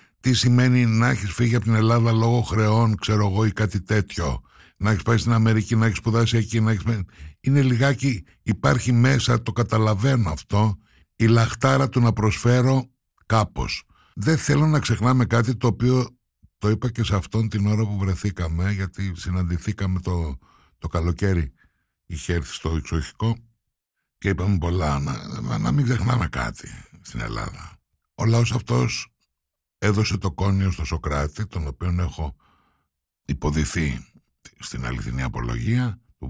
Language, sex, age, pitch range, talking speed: Greek, male, 60-79, 80-115 Hz, 145 wpm